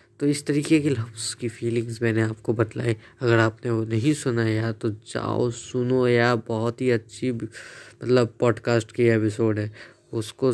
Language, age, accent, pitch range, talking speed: Hindi, 20-39, native, 115-135 Hz, 165 wpm